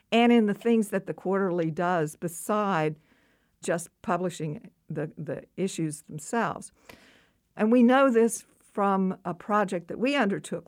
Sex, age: female, 60-79